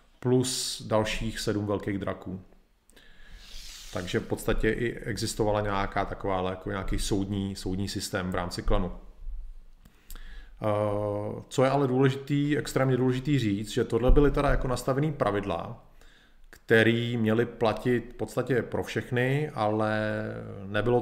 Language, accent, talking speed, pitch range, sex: Czech, native, 130 wpm, 105-120 Hz, male